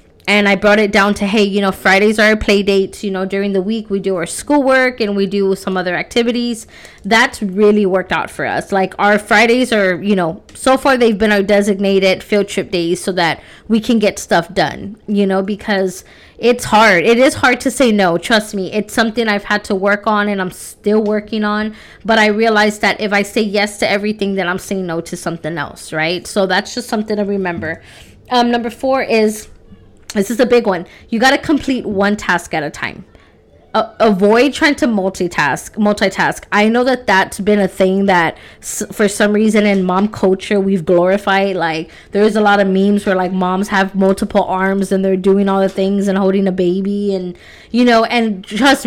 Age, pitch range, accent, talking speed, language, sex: 20-39, 190-220 Hz, American, 210 wpm, English, female